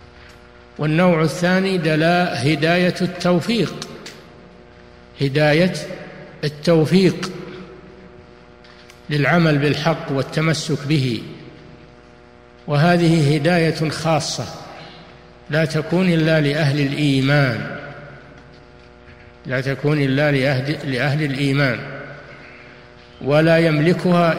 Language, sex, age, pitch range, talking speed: Arabic, male, 60-79, 130-170 Hz, 65 wpm